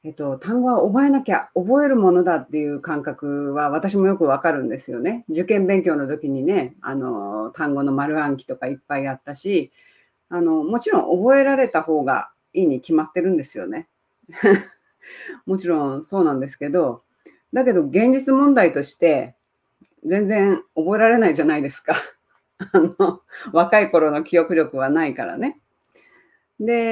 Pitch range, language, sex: 150-250 Hz, Japanese, female